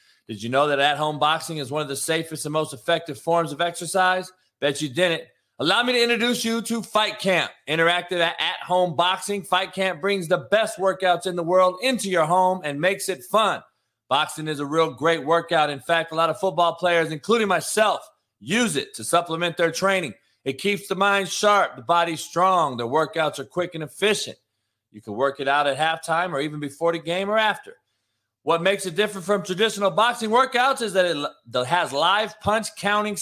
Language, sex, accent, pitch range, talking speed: English, male, American, 145-195 Hz, 200 wpm